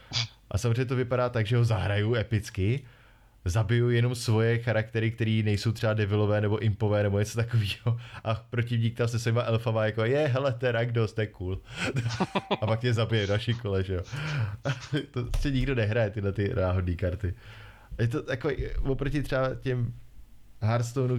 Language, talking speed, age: Czech, 155 wpm, 20-39